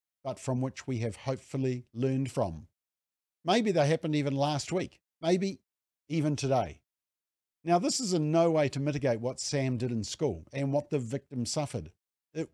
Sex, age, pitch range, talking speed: male, 50-69, 115-150 Hz, 170 wpm